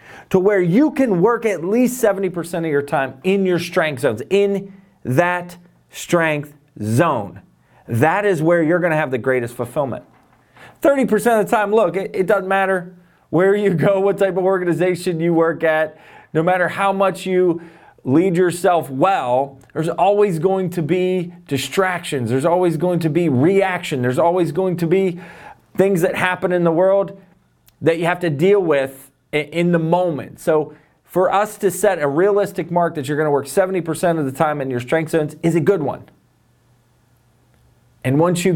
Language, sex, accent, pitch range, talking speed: English, male, American, 150-190 Hz, 180 wpm